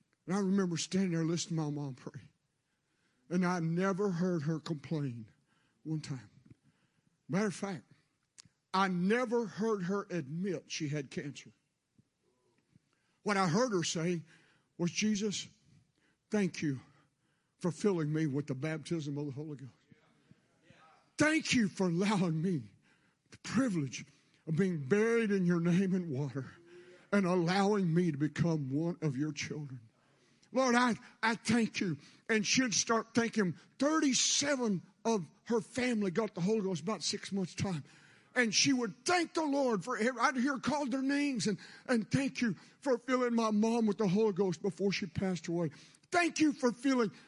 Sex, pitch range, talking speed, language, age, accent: male, 160-230 Hz, 160 wpm, English, 60-79, American